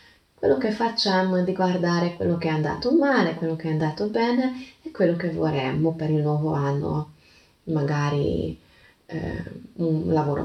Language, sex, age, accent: Italian, female, 30-49, native